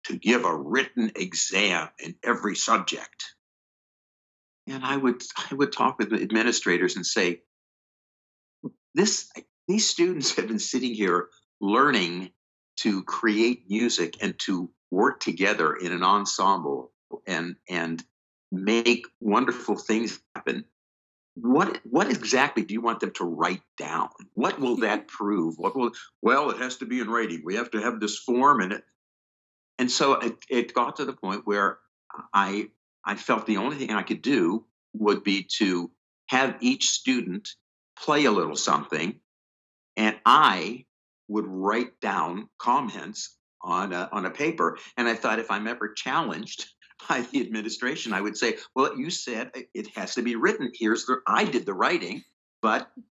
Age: 60-79